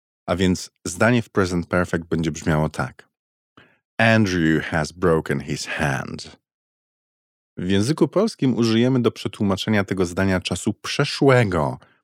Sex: male